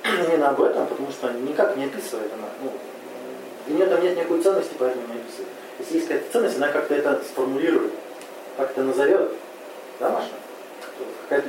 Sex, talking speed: male, 170 wpm